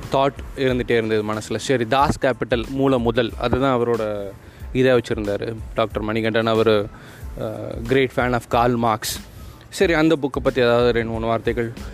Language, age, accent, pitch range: Tamil, 20-39, native, 115-155 Hz